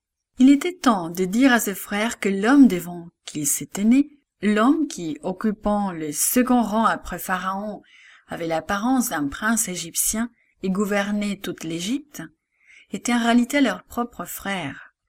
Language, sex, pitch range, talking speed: English, female, 190-265 Hz, 145 wpm